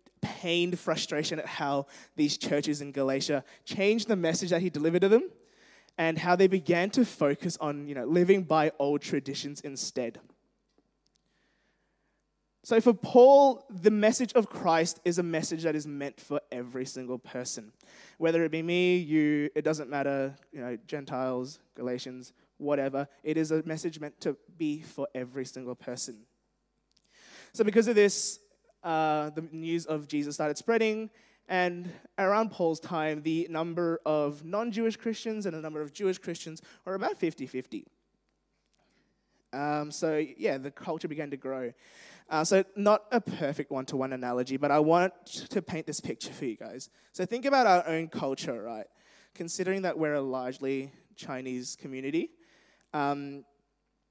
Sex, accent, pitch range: male, Australian, 140-190 Hz